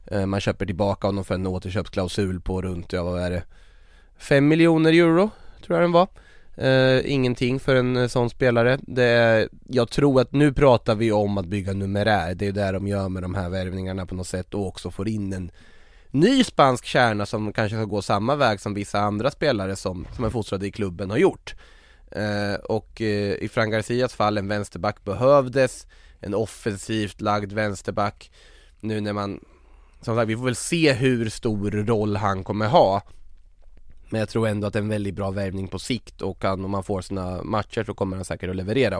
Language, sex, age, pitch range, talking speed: Swedish, male, 20-39, 95-120 Hz, 200 wpm